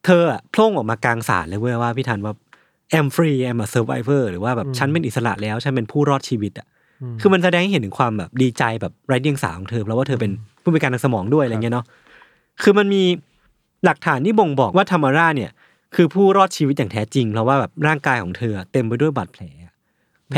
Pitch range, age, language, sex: 115-155 Hz, 20-39, Thai, male